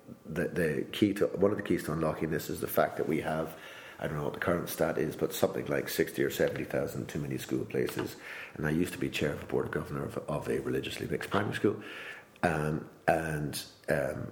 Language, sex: English, male